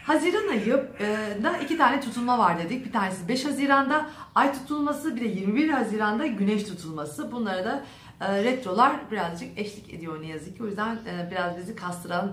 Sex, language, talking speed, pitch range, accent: female, Turkish, 160 wpm, 200-275 Hz, native